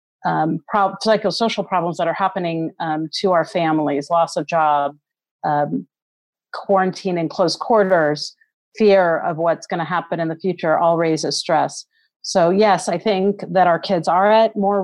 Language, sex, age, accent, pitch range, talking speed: English, female, 40-59, American, 160-195 Hz, 160 wpm